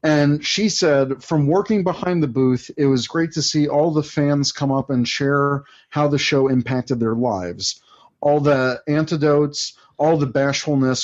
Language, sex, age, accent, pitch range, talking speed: English, male, 40-59, American, 130-155 Hz, 175 wpm